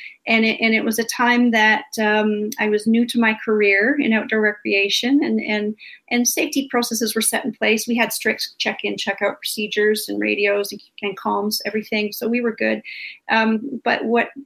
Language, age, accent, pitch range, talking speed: English, 40-59, American, 210-240 Hz, 180 wpm